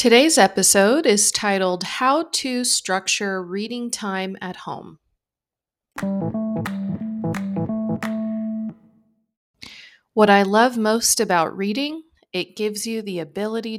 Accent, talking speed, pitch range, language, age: American, 95 wpm, 180-225 Hz, English, 30-49